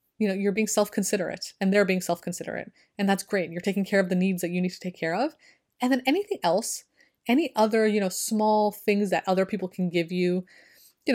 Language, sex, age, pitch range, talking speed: English, female, 30-49, 175-210 Hz, 225 wpm